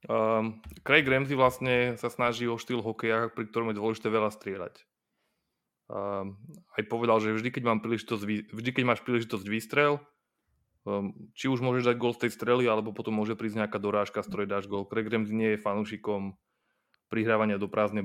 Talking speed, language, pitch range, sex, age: 170 wpm, Slovak, 105-120 Hz, male, 20-39